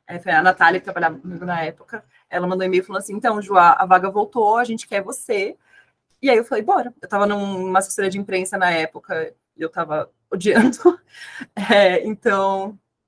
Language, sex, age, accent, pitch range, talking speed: Portuguese, female, 20-39, Brazilian, 165-210 Hz, 195 wpm